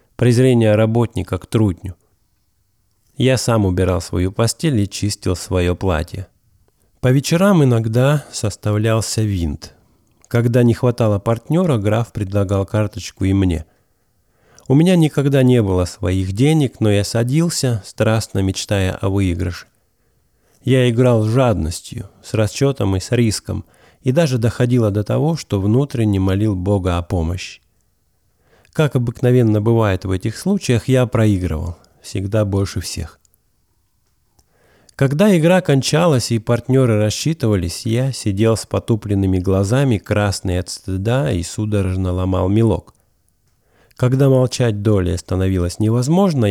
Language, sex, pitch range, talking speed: English, male, 95-120 Hz, 125 wpm